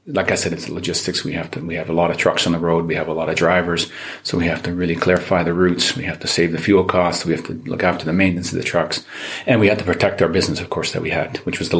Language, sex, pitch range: Czech, male, 90-100 Hz